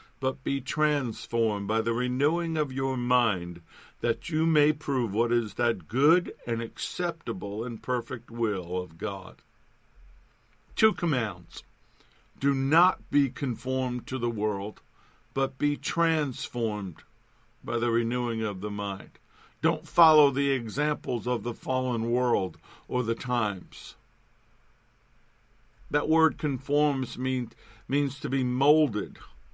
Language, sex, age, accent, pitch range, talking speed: English, male, 50-69, American, 110-135 Hz, 120 wpm